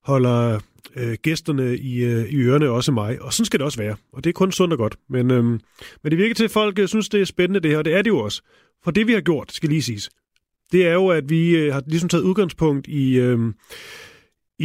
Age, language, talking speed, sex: 30-49, Danish, 250 wpm, male